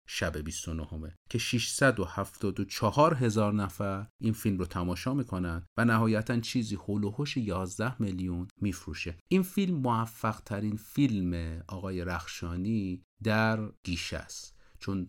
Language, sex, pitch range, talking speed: Persian, male, 90-110 Hz, 125 wpm